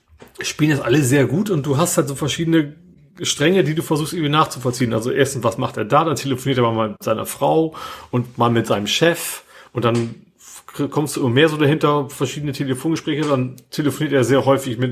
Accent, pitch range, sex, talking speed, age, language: German, 130-160 Hz, male, 205 wpm, 30-49, German